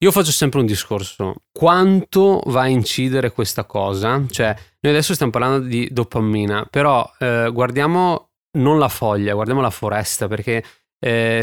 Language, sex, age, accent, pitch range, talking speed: Italian, male, 20-39, native, 110-135 Hz, 150 wpm